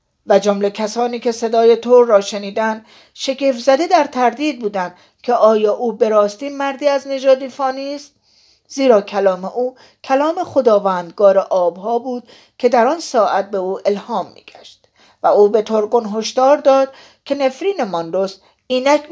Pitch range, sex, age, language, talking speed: 195-255 Hz, female, 50-69, Persian, 145 wpm